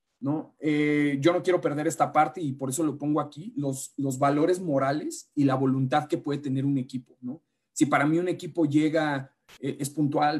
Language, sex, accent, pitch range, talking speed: Spanish, male, Mexican, 135-160 Hz, 210 wpm